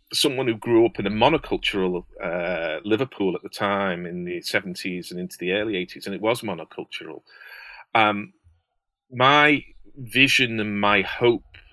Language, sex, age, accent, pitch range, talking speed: English, male, 40-59, British, 90-110 Hz, 155 wpm